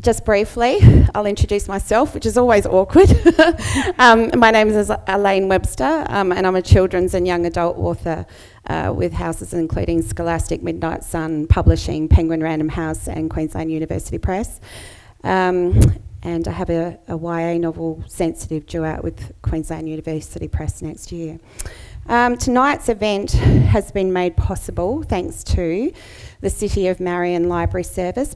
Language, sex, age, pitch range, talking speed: English, female, 30-49, 155-195 Hz, 150 wpm